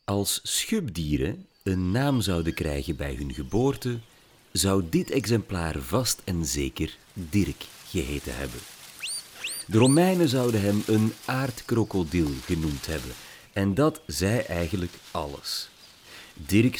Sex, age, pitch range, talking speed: male, 40-59, 85-125 Hz, 115 wpm